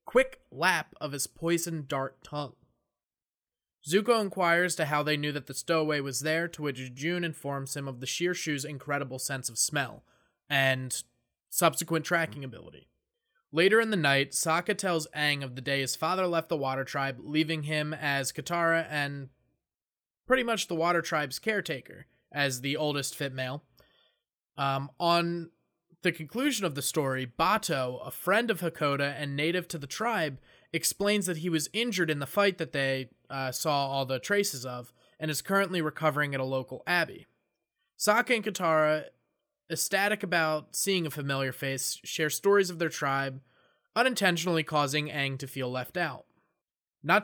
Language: English